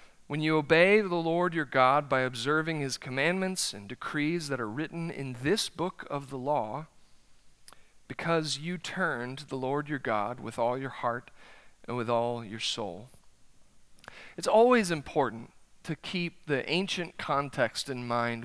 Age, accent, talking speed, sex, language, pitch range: 40-59, American, 155 wpm, male, English, 140-195 Hz